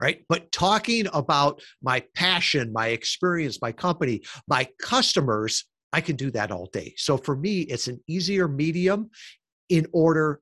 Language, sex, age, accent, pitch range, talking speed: English, male, 50-69, American, 125-170 Hz, 150 wpm